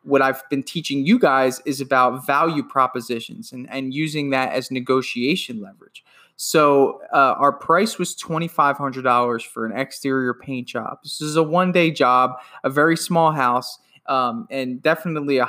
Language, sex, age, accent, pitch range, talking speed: English, male, 20-39, American, 130-155 Hz, 160 wpm